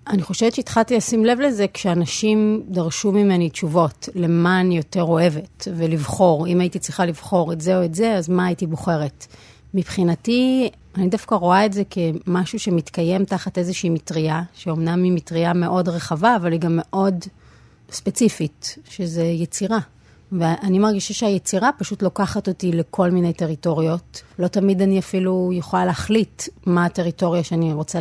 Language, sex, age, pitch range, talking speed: Hebrew, female, 30-49, 165-195 Hz, 150 wpm